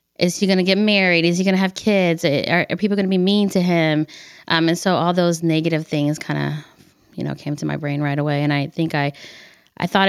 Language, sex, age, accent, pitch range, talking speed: English, female, 20-39, American, 150-185 Hz, 260 wpm